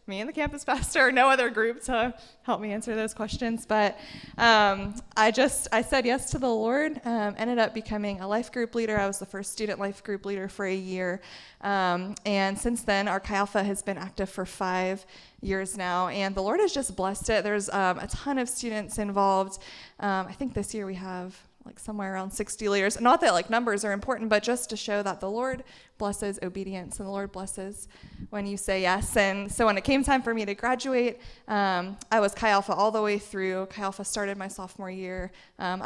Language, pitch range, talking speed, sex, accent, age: English, 190-230 Hz, 220 wpm, female, American, 20-39